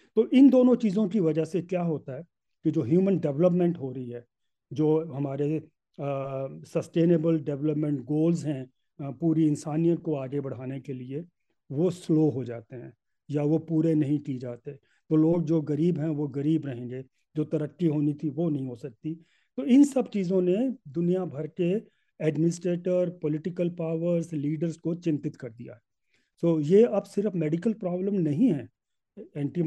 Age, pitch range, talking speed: 40-59, 145-175 Hz, 170 wpm